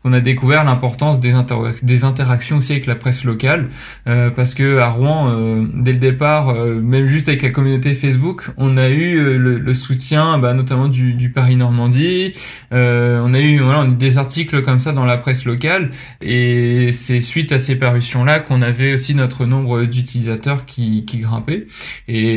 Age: 20-39